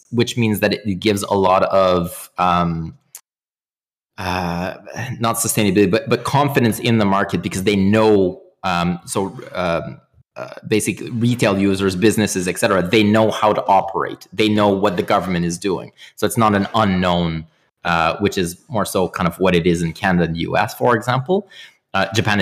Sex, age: male, 30-49